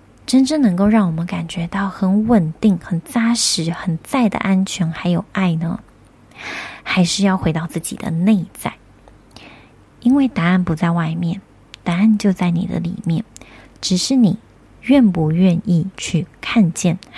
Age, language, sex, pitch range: 30-49, Chinese, female, 170-210 Hz